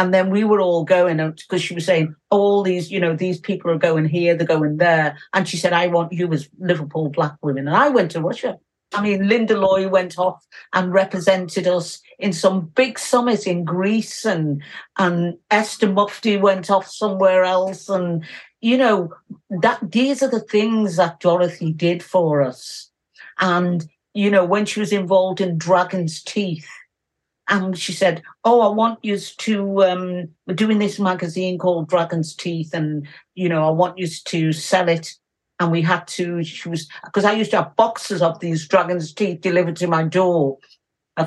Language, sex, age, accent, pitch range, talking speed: English, female, 50-69, British, 165-190 Hz, 190 wpm